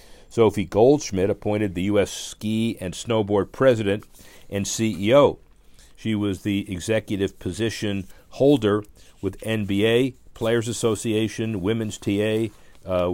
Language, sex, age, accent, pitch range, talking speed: English, male, 50-69, American, 95-115 Hz, 110 wpm